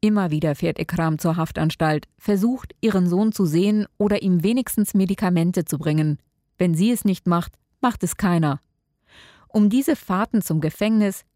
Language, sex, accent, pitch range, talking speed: German, female, German, 160-200 Hz, 160 wpm